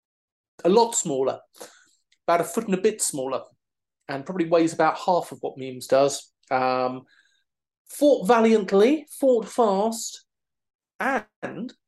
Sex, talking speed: male, 125 wpm